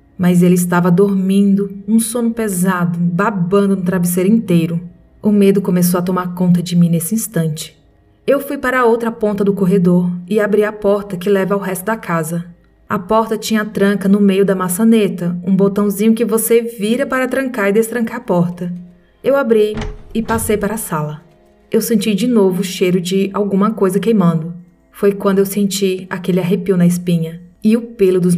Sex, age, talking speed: female, 20-39, 185 wpm